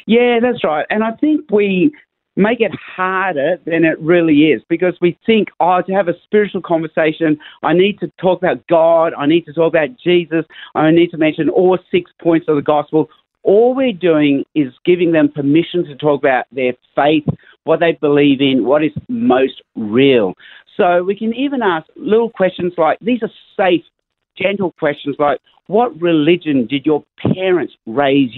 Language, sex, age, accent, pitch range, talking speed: English, male, 50-69, Australian, 150-190 Hz, 180 wpm